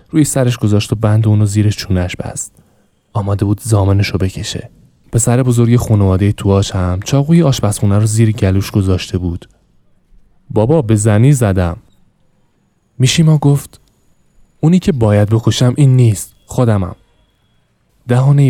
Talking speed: 135 wpm